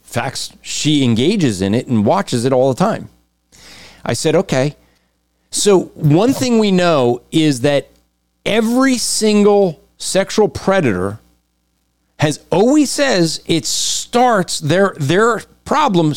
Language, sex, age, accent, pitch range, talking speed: English, male, 40-59, American, 115-175 Hz, 125 wpm